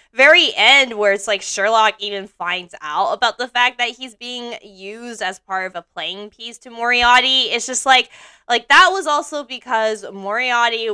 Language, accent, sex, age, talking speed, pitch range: English, American, female, 20-39, 180 wpm, 195-245 Hz